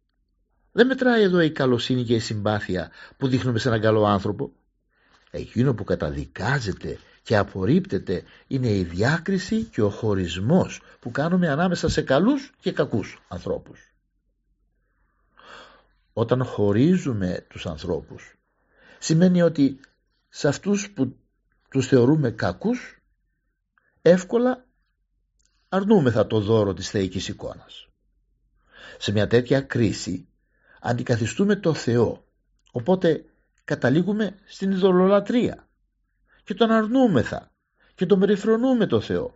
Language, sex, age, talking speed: Greek, male, 50-69, 110 wpm